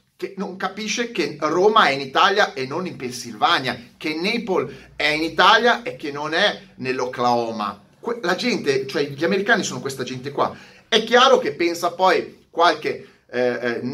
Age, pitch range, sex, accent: 30-49, 145-235 Hz, male, native